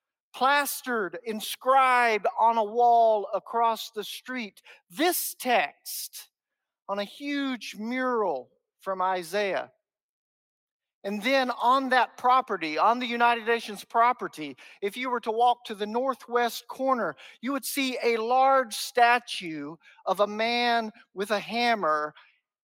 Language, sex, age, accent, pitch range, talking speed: English, male, 50-69, American, 195-270 Hz, 125 wpm